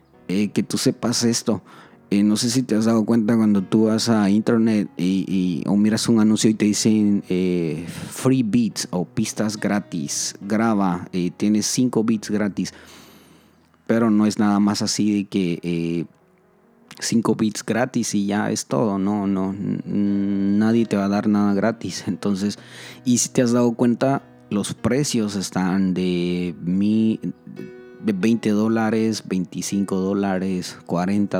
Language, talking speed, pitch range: Spanish, 160 wpm, 95-115 Hz